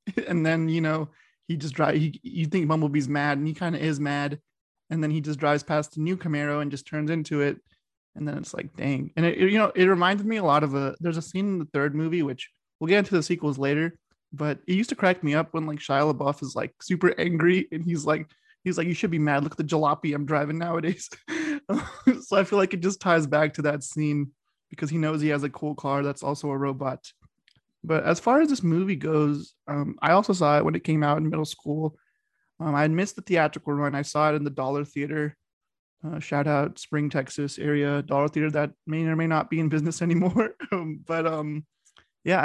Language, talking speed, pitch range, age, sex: English, 235 wpm, 150-175 Hz, 20-39, male